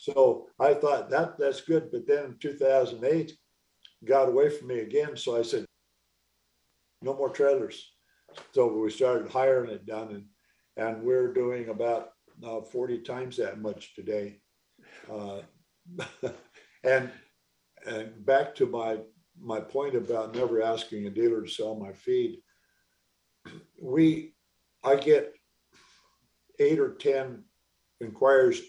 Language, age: English, 50-69